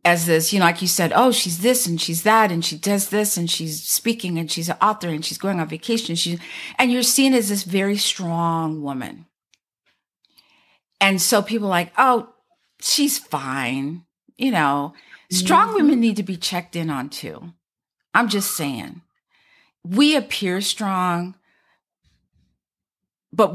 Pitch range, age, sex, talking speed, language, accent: 170-245 Hz, 50-69, female, 165 wpm, English, American